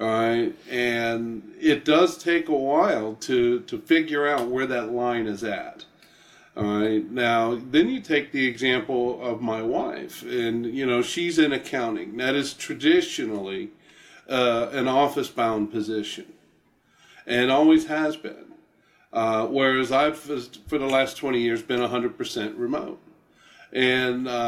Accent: American